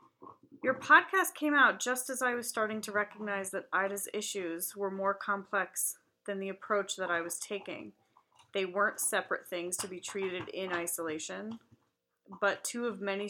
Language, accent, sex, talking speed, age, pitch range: English, American, female, 165 wpm, 30-49, 180-235 Hz